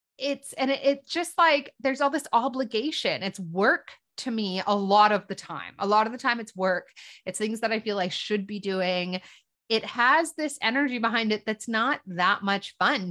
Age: 20-39